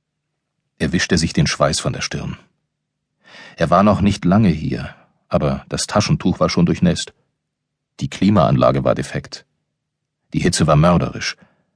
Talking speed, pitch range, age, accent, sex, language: 145 wpm, 90-145 Hz, 40-59, German, male, German